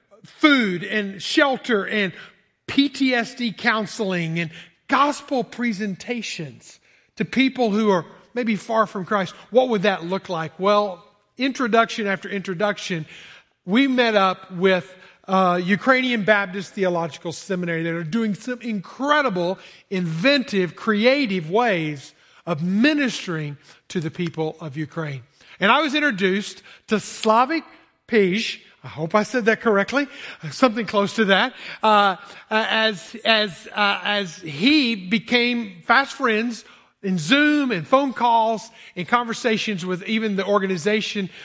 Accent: American